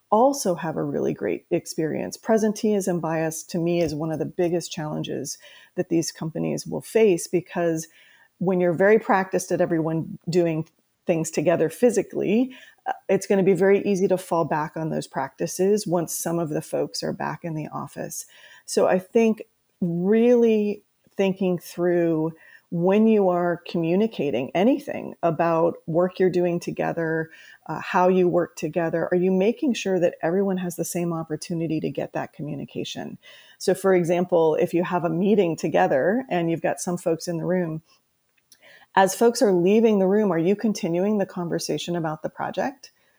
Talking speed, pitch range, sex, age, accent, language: 165 wpm, 170-195 Hz, female, 40-59, American, English